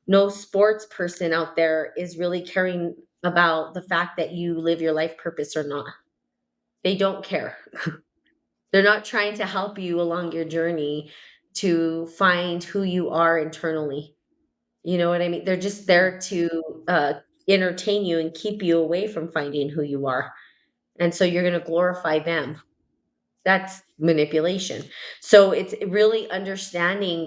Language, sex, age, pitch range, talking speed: English, female, 30-49, 160-185 Hz, 155 wpm